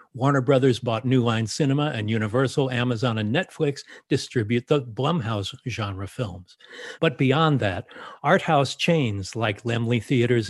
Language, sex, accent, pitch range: English, male, American, 110-140 Hz